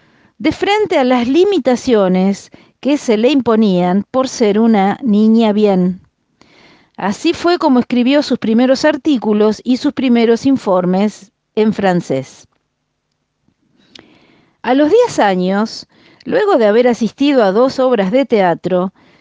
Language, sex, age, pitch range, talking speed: Italian, female, 40-59, 195-275 Hz, 125 wpm